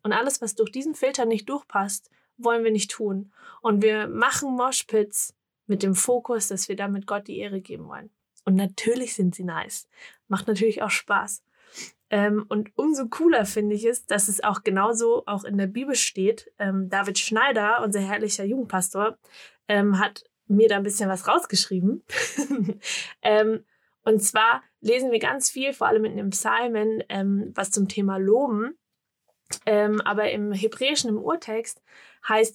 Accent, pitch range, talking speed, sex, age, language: German, 200-230 Hz, 155 wpm, female, 20-39, German